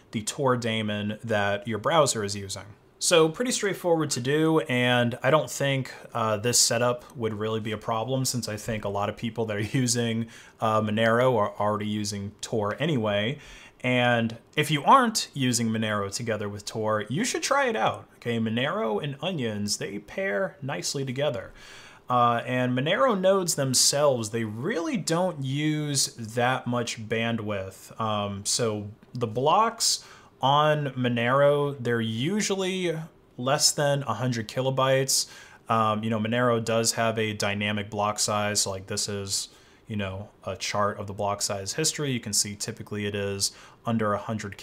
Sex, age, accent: male, 20-39, American